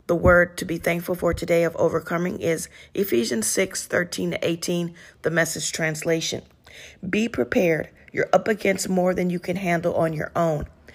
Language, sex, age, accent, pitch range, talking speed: English, female, 40-59, American, 165-190 Hz, 170 wpm